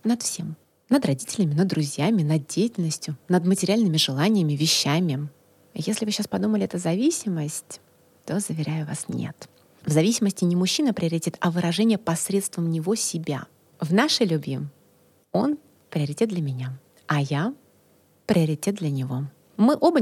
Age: 30-49